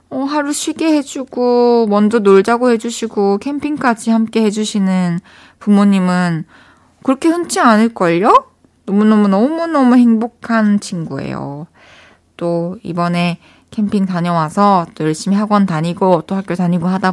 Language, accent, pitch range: Korean, native, 165-230 Hz